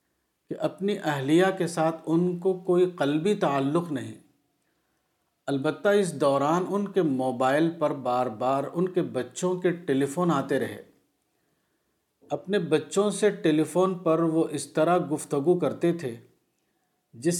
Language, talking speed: Urdu, 135 wpm